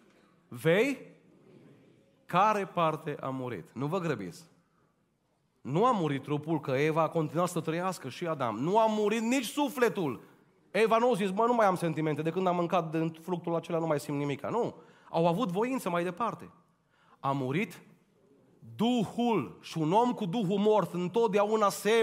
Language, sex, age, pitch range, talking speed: Romanian, male, 30-49, 135-200 Hz, 170 wpm